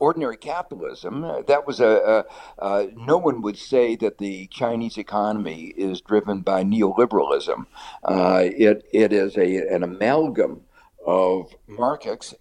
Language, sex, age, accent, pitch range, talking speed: English, male, 60-79, American, 105-145 Hz, 135 wpm